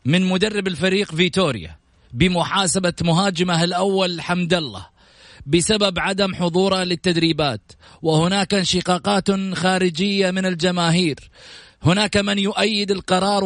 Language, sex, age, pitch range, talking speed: Arabic, male, 30-49, 150-200 Hz, 100 wpm